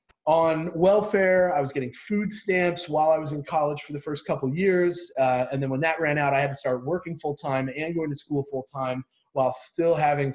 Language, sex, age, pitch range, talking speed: English, male, 30-49, 130-170 Hz, 225 wpm